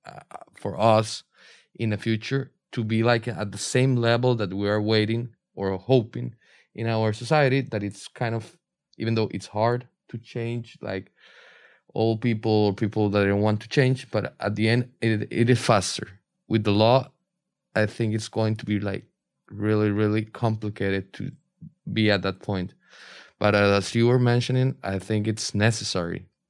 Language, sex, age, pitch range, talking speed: English, male, 20-39, 105-125 Hz, 175 wpm